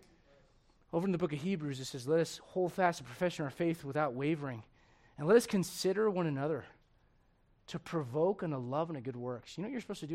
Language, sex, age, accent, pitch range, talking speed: English, male, 30-49, American, 155-245 Hz, 240 wpm